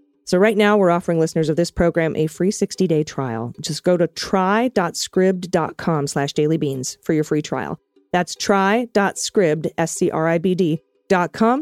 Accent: American